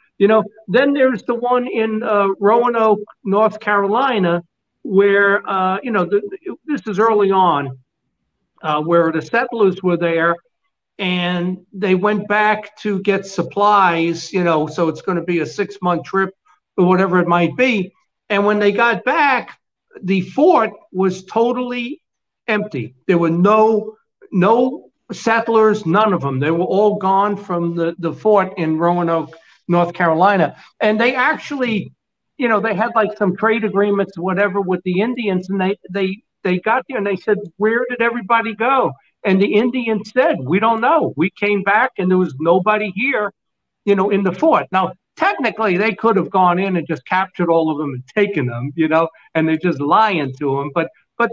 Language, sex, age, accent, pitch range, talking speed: English, male, 60-79, American, 175-225 Hz, 180 wpm